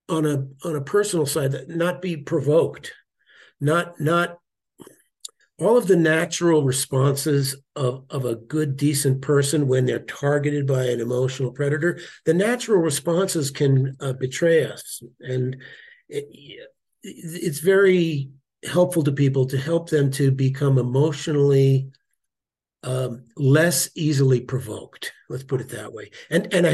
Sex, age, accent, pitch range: male, 50-69, American, 135-170 Hz